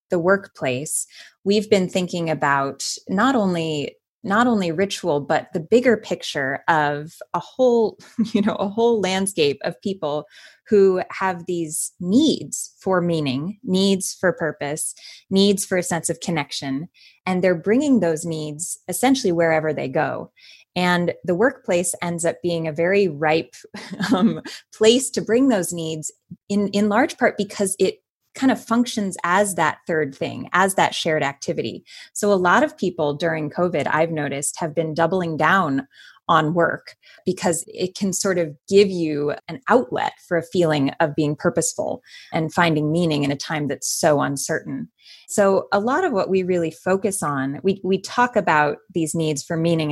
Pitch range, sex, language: 155-195 Hz, female, English